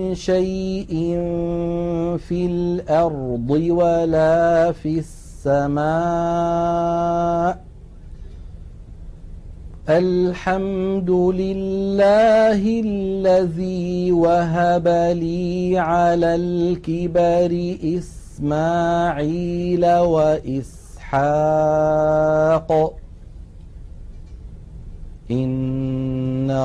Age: 50-69